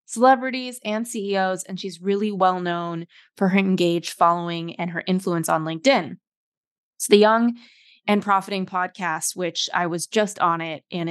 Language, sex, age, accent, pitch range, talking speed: English, female, 20-39, American, 170-205 Hz, 155 wpm